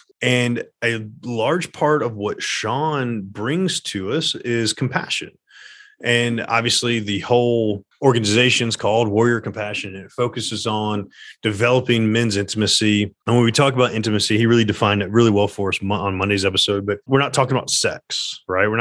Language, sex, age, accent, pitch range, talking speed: English, male, 30-49, American, 105-125 Hz, 170 wpm